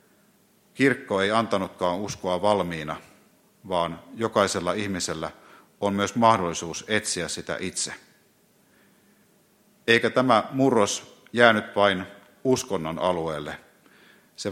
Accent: native